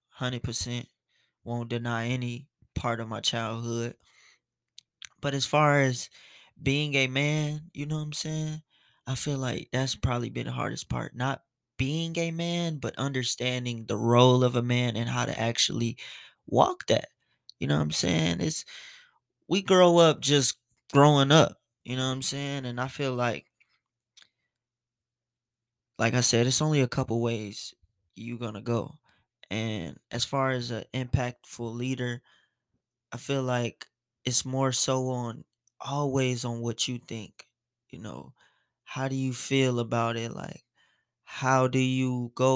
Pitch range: 120-140 Hz